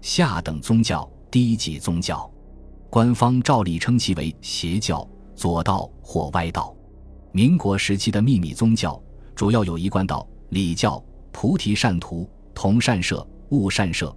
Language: Chinese